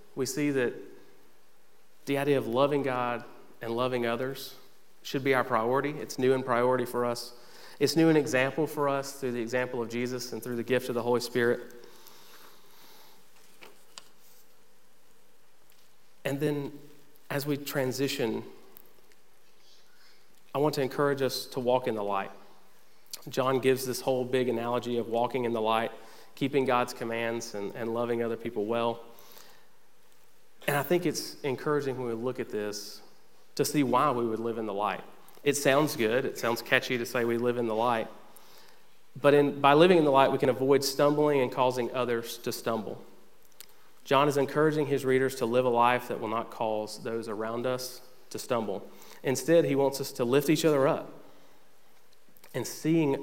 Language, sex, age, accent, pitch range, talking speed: English, male, 40-59, American, 120-140 Hz, 170 wpm